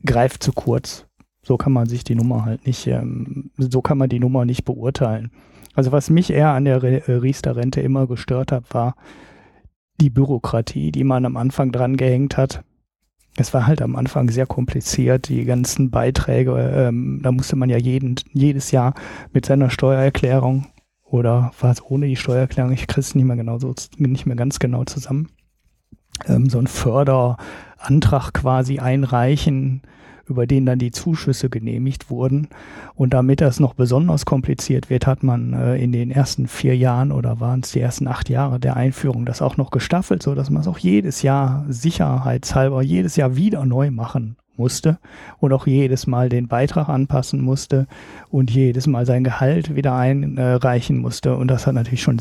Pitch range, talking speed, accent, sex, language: 125-135 Hz, 175 wpm, German, male, German